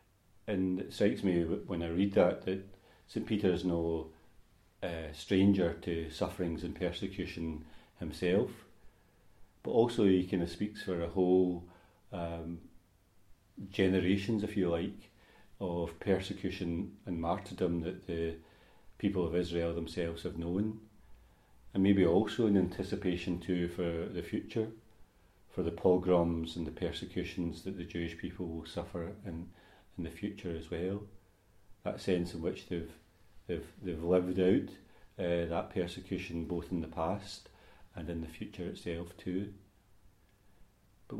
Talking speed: 140 wpm